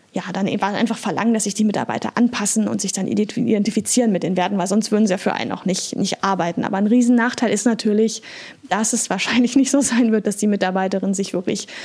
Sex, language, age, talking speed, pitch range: female, German, 10-29, 225 wpm, 205-240 Hz